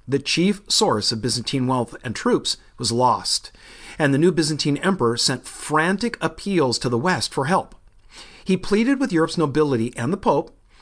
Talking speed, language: 170 wpm, English